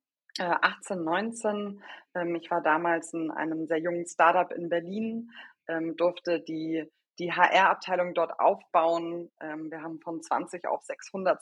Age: 20-39